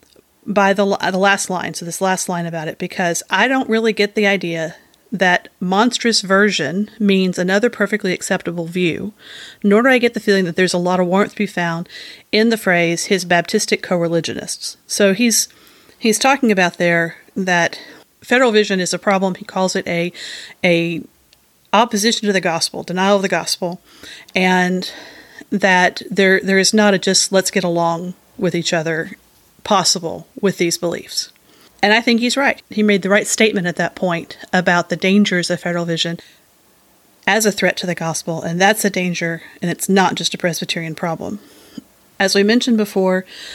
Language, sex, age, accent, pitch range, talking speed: English, female, 30-49, American, 170-205 Hz, 180 wpm